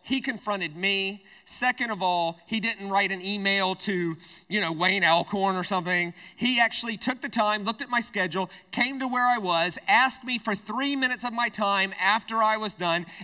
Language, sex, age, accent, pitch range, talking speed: English, male, 30-49, American, 170-225 Hz, 200 wpm